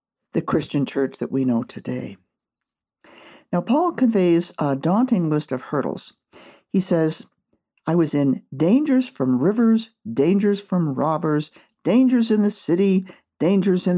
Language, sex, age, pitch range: English, male, 50-69, 150-225 Hz